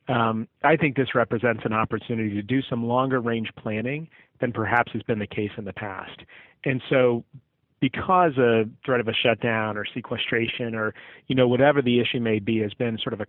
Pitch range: 110-135 Hz